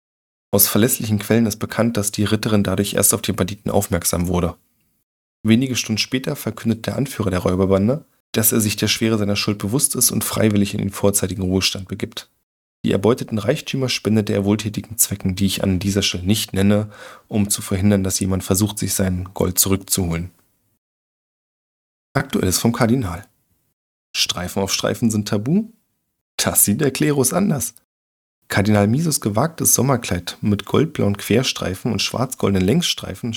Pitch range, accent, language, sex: 95-115 Hz, German, German, male